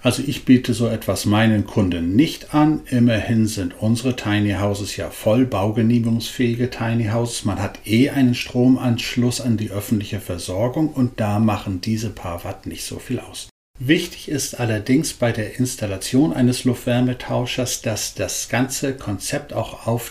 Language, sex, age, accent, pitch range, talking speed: German, male, 60-79, German, 100-130 Hz, 155 wpm